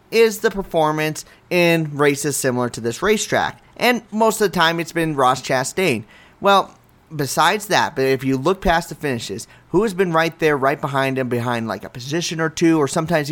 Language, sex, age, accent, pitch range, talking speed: English, male, 30-49, American, 140-195 Hz, 200 wpm